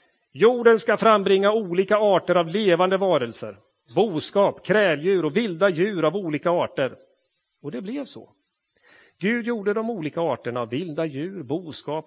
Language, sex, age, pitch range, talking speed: Swedish, male, 40-59, 155-205 Hz, 145 wpm